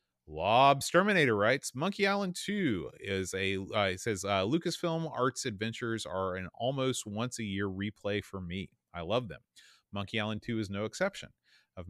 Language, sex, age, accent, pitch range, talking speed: English, male, 30-49, American, 95-130 Hz, 165 wpm